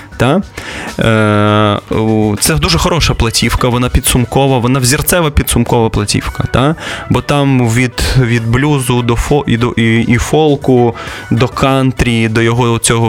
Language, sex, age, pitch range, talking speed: Russian, male, 20-39, 110-130 Hz, 130 wpm